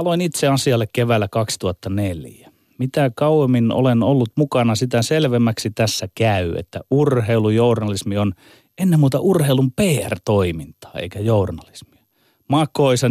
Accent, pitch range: native, 105-135 Hz